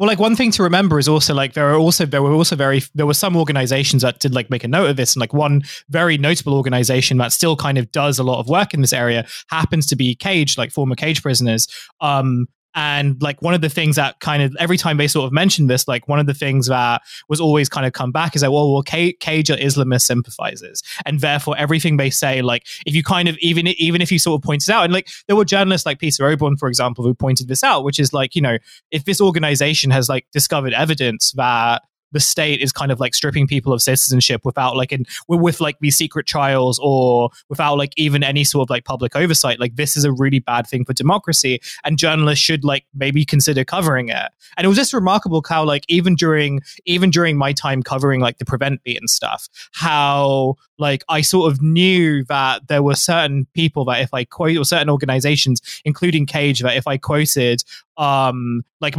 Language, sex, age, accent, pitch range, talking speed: English, male, 20-39, British, 130-160 Hz, 235 wpm